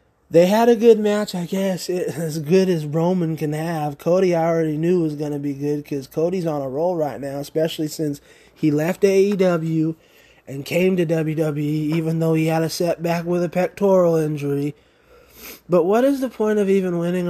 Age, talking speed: 20-39, 195 wpm